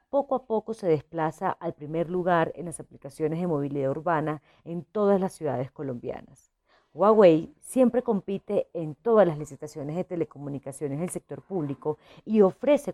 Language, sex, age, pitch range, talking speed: Spanish, female, 40-59, 150-200 Hz, 155 wpm